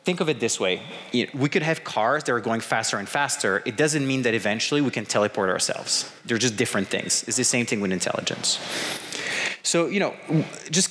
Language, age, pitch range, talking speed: English, 30-49, 115-160 Hz, 210 wpm